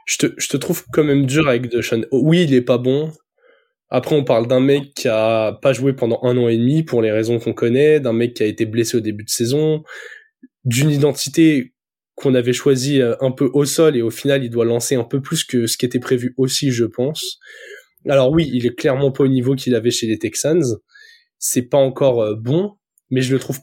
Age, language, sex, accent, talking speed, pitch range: 20-39, French, male, French, 230 wpm, 120-160 Hz